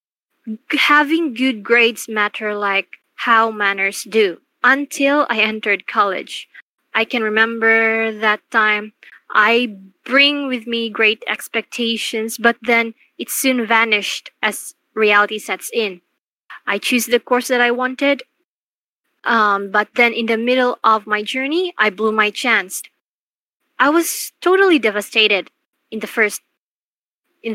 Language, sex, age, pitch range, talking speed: Filipino, female, 20-39, 220-265 Hz, 130 wpm